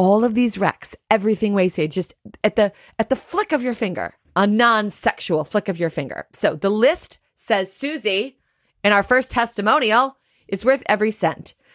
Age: 30-49